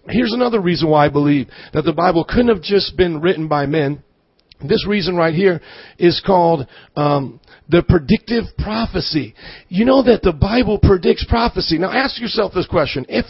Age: 40-59